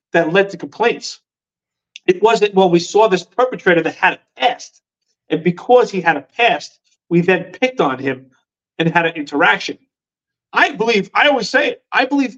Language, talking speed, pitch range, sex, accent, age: English, 180 wpm, 160-225 Hz, male, American, 40-59